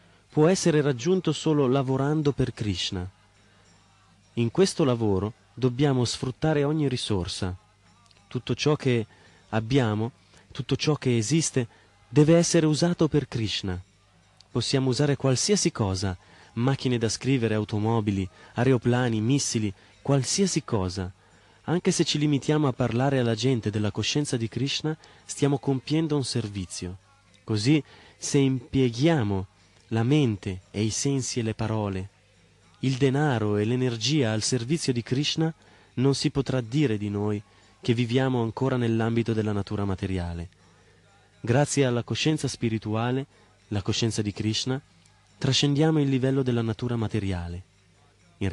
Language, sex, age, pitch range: Italian, male, 30-49, 100-135 Hz